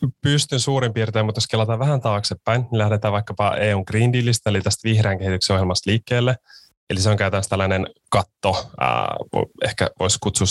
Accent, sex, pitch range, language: native, male, 95-110 Hz, Finnish